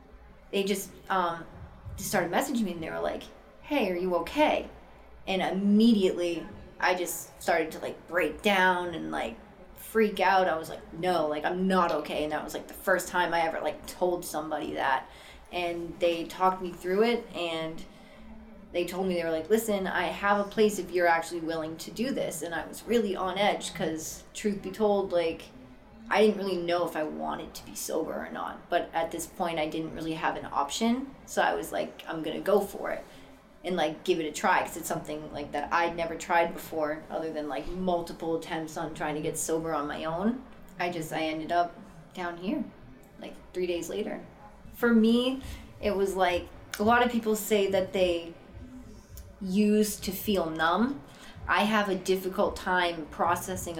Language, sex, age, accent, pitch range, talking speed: English, female, 20-39, American, 160-200 Hz, 195 wpm